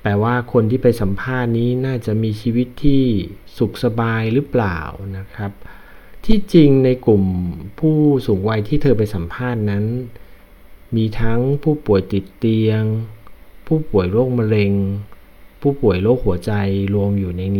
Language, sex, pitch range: Thai, male, 95-125 Hz